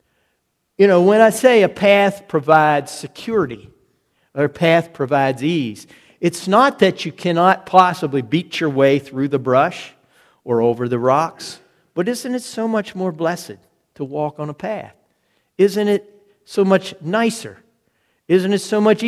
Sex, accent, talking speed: male, American, 160 wpm